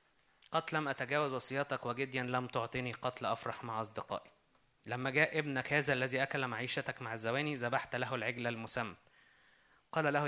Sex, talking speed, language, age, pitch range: male, 150 wpm, Arabic, 20-39, 125-155 Hz